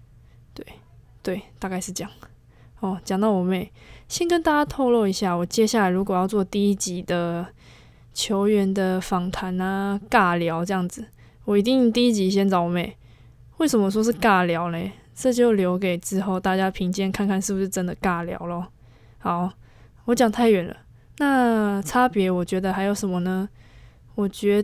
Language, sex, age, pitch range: Chinese, female, 20-39, 180-215 Hz